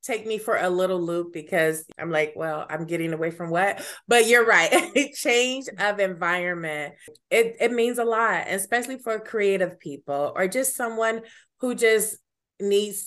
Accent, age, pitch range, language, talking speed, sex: American, 30-49, 150-195 Hz, English, 165 wpm, female